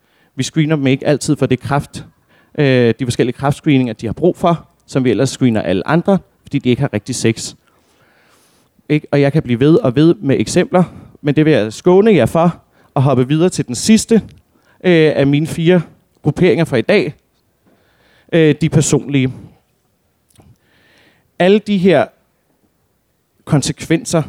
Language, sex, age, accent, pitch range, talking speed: Danish, male, 30-49, native, 125-160 Hz, 150 wpm